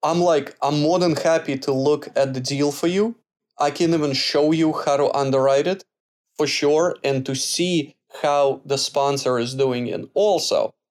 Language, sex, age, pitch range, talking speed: English, male, 20-39, 140-180 Hz, 185 wpm